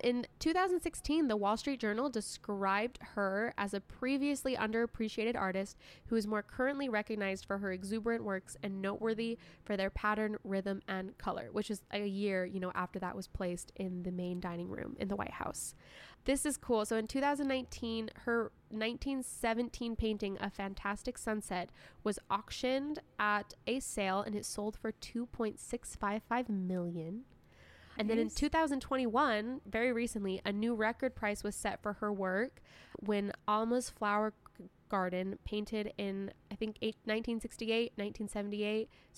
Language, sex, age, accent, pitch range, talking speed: English, female, 10-29, American, 200-235 Hz, 150 wpm